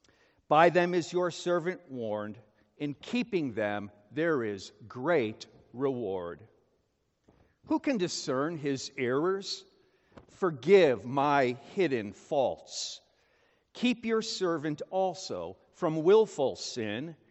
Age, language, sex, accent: 50-69, English, male, American